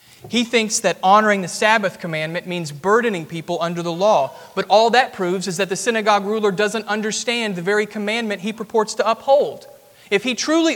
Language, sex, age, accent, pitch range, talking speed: English, male, 30-49, American, 180-255 Hz, 190 wpm